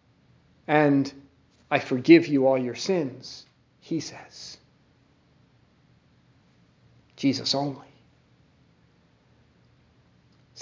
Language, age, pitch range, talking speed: English, 50-69, 215-270 Hz, 70 wpm